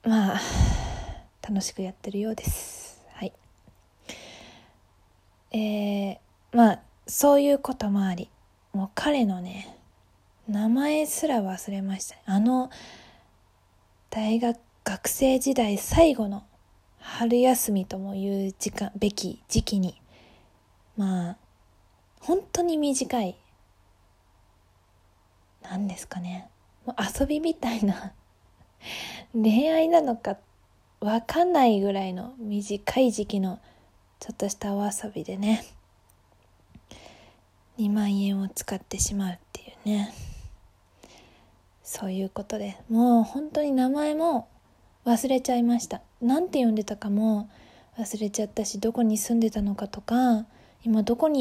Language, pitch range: Japanese, 190-240 Hz